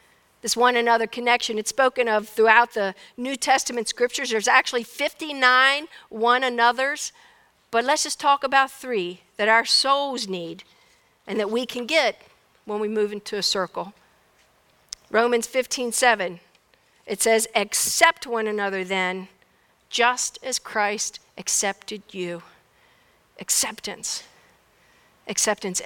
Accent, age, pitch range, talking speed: American, 50-69, 215-270 Hz, 120 wpm